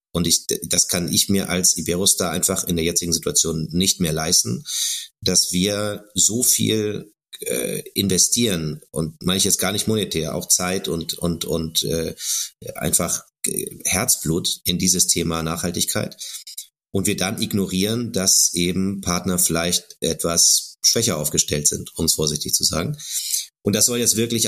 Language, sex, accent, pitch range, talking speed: German, male, German, 85-95 Hz, 150 wpm